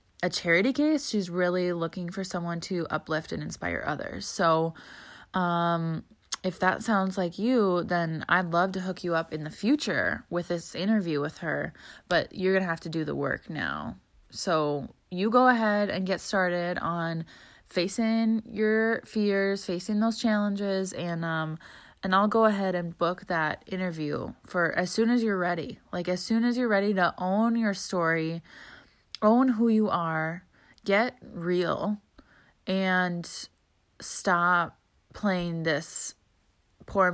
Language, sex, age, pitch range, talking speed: English, female, 20-39, 170-200 Hz, 155 wpm